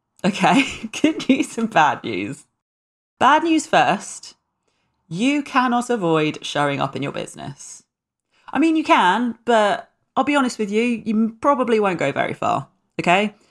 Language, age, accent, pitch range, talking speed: English, 30-49, British, 170-240 Hz, 150 wpm